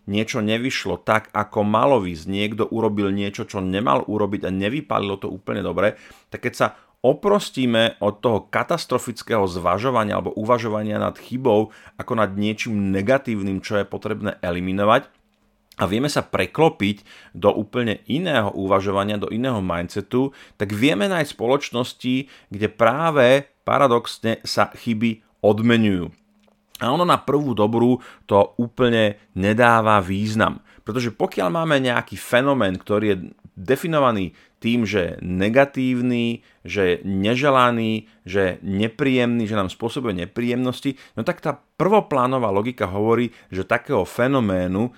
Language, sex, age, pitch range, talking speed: Slovak, male, 30-49, 100-125 Hz, 130 wpm